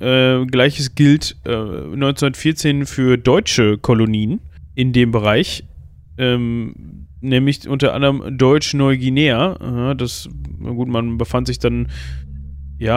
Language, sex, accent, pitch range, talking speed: German, male, German, 105-125 Hz, 105 wpm